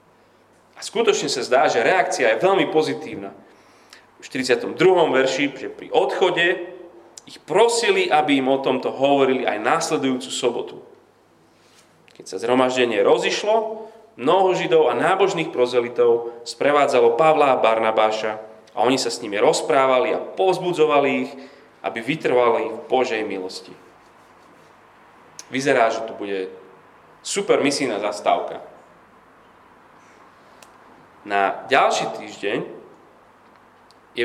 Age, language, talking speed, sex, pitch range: 30-49, Slovak, 110 wpm, male, 115-185 Hz